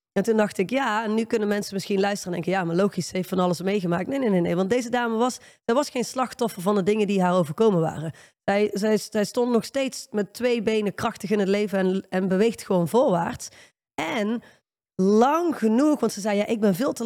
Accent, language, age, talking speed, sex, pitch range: Dutch, Dutch, 20-39, 240 wpm, female, 190-230 Hz